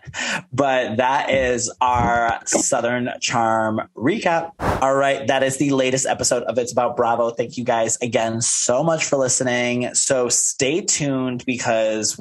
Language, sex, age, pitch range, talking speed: English, male, 20-39, 115-145 Hz, 145 wpm